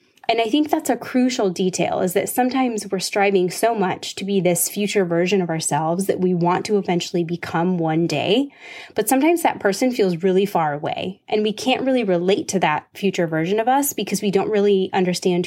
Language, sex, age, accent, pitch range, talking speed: English, female, 20-39, American, 175-230 Hz, 205 wpm